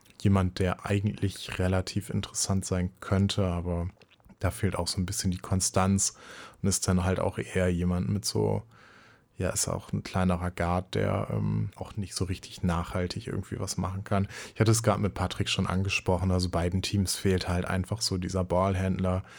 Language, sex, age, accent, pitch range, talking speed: German, male, 20-39, German, 95-105 Hz, 185 wpm